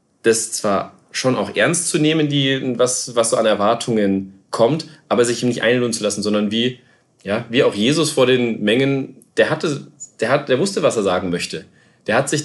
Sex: male